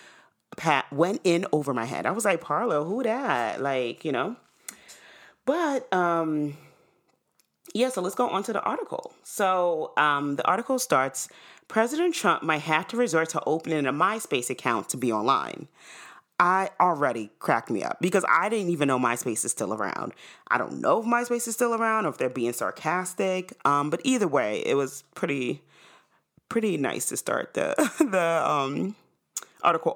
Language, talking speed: English, 170 wpm